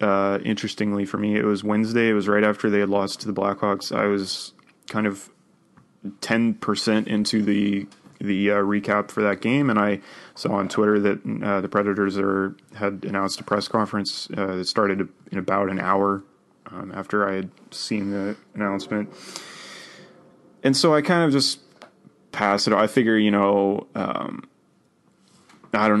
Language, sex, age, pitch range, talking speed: English, male, 20-39, 100-105 Hz, 170 wpm